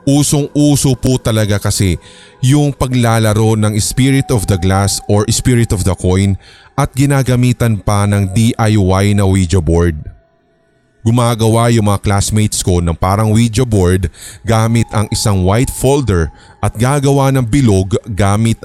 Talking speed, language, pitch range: 140 wpm, Filipino, 95-125 Hz